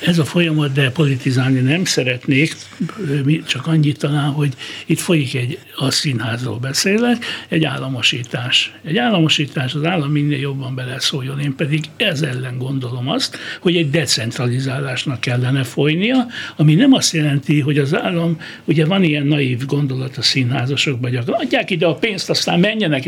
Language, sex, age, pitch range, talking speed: Hungarian, male, 60-79, 135-175 Hz, 155 wpm